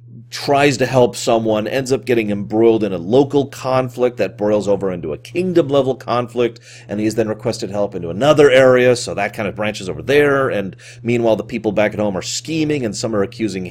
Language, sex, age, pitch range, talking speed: English, male, 30-49, 105-130 Hz, 205 wpm